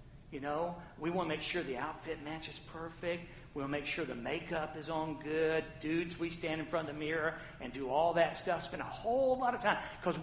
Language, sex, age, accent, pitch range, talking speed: English, male, 50-69, American, 155-220 Hz, 235 wpm